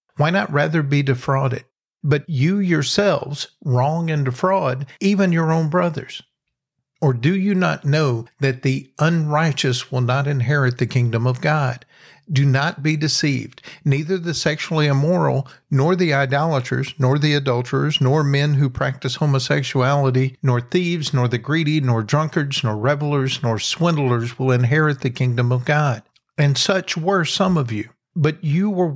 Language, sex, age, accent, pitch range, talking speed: English, male, 50-69, American, 130-155 Hz, 155 wpm